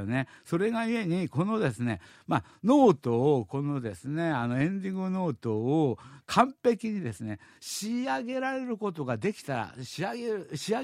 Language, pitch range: Japanese, 135-200 Hz